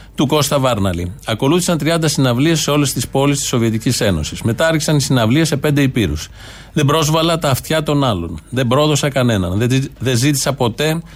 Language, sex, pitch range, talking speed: Greek, male, 120-150 Hz, 165 wpm